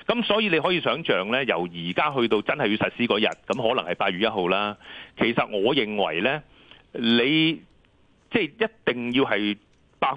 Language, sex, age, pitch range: Chinese, male, 40-59, 100-140 Hz